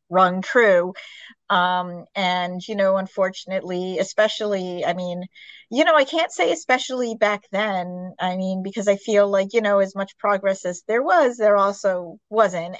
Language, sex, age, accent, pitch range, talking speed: English, female, 30-49, American, 185-235 Hz, 165 wpm